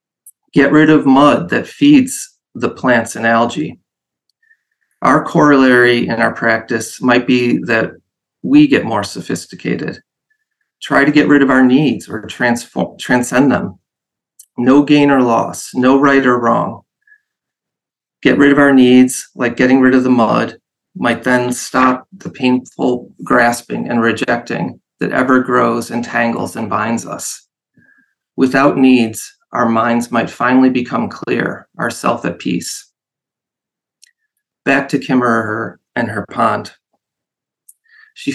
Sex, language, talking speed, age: male, English, 135 wpm, 30-49